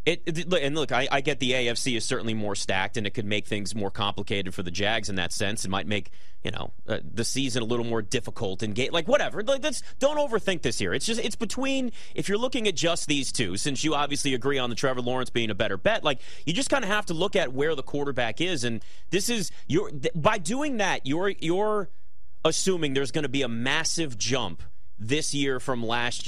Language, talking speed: English, 240 wpm